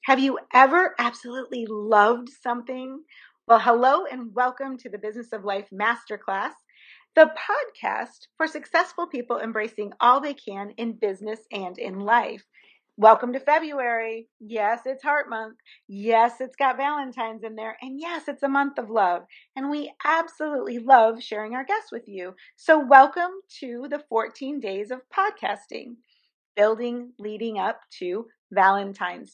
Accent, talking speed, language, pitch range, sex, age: American, 145 wpm, English, 215-275 Hz, female, 40-59